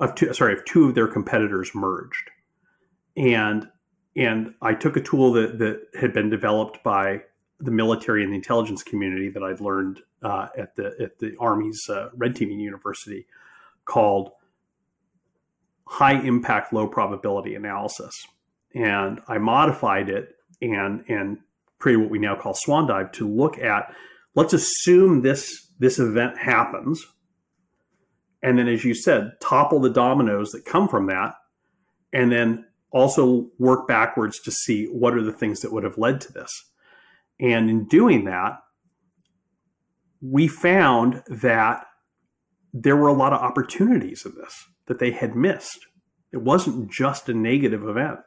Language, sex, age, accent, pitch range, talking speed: English, male, 40-59, American, 110-145 Hz, 150 wpm